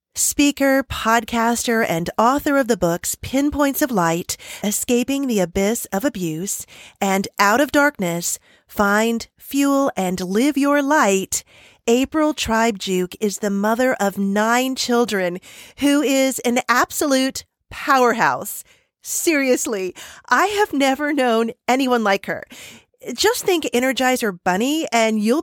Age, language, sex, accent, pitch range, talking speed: 40-59, English, female, American, 195-270 Hz, 125 wpm